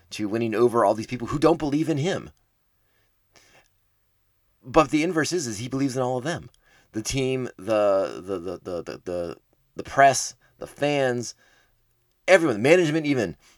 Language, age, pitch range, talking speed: English, 30-49, 100-135 Hz, 170 wpm